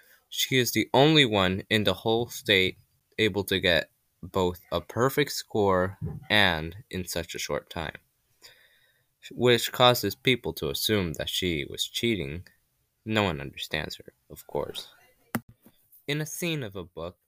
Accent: American